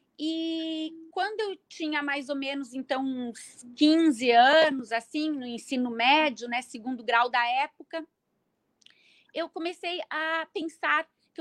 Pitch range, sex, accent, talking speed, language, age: 245-305 Hz, female, Brazilian, 130 wpm, Portuguese, 30-49